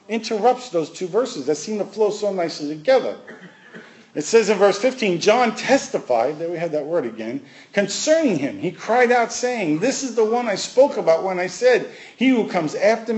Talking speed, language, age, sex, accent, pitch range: 200 wpm, English, 50-69, male, American, 145-225 Hz